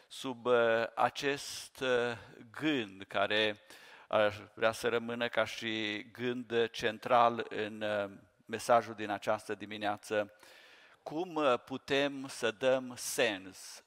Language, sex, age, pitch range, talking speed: Romanian, male, 50-69, 110-135 Hz, 90 wpm